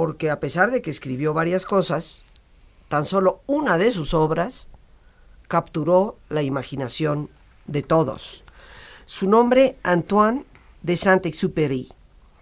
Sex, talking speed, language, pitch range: female, 120 wpm, Spanish, 135-180 Hz